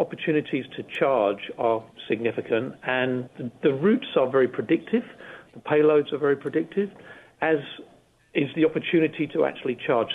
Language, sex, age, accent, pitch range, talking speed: English, male, 40-59, British, 120-165 Hz, 140 wpm